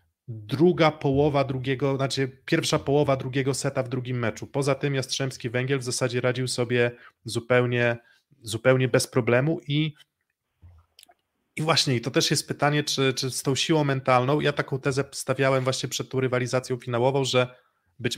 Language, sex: Polish, male